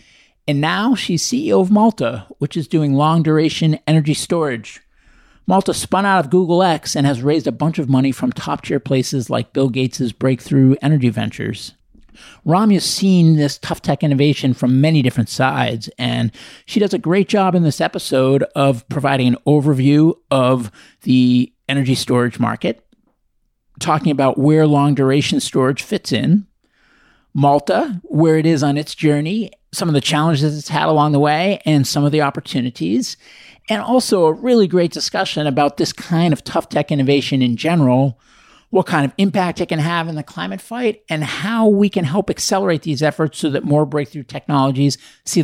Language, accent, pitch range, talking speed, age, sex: English, American, 135-175 Hz, 170 wpm, 50-69, male